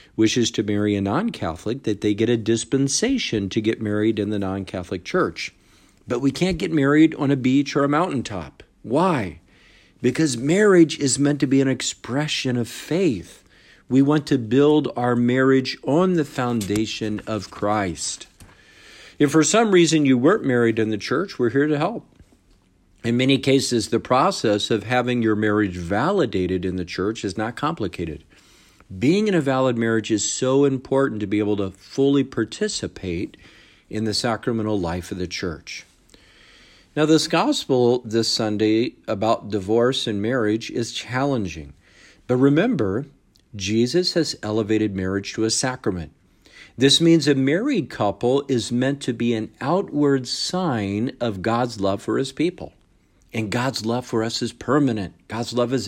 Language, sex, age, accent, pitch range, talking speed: English, male, 50-69, American, 105-135 Hz, 160 wpm